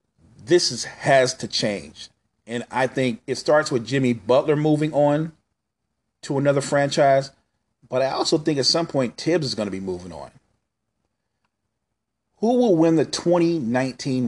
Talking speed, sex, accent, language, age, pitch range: 155 wpm, male, American, English, 40-59, 115-145 Hz